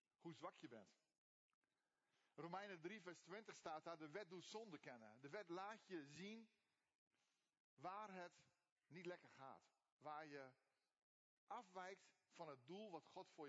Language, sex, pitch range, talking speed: Dutch, male, 160-205 Hz, 150 wpm